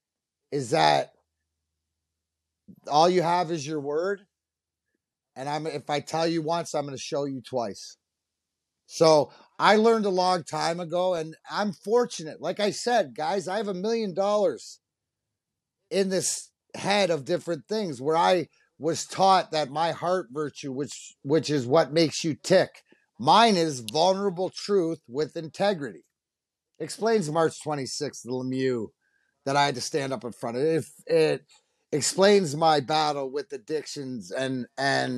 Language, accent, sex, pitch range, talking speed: English, American, male, 135-185 Hz, 155 wpm